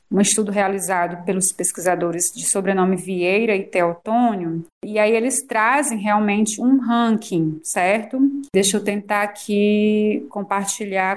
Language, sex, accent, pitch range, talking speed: Portuguese, female, Brazilian, 195-245 Hz, 125 wpm